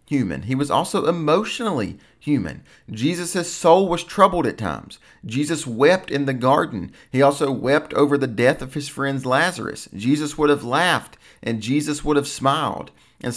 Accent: American